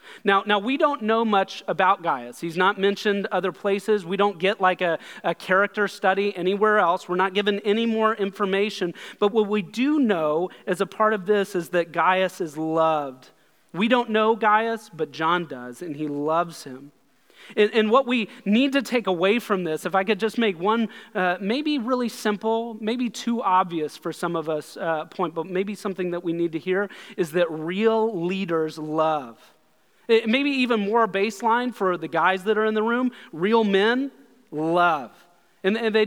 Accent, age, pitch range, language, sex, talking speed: American, 30-49, 175-220 Hz, English, male, 190 wpm